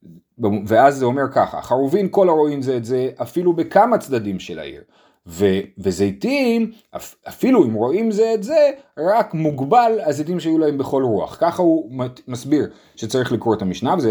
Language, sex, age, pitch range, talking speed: Hebrew, male, 30-49, 125-195 Hz, 165 wpm